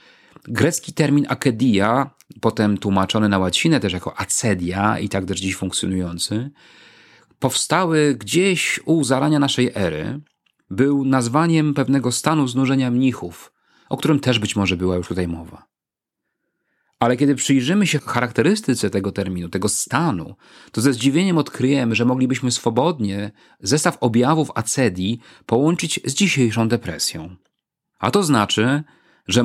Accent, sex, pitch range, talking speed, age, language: native, male, 100-135 Hz, 130 wpm, 40-59, Polish